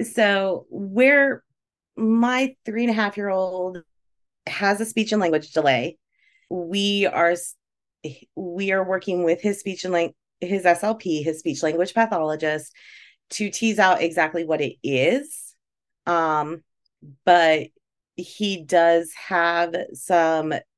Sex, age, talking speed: female, 30-49, 125 wpm